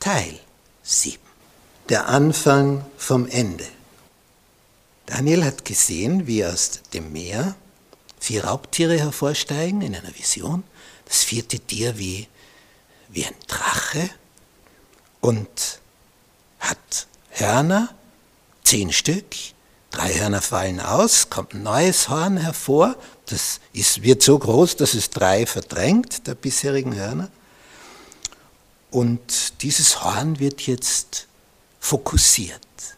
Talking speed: 105 wpm